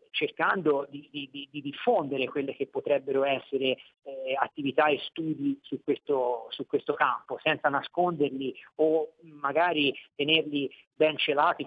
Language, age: Italian, 40-59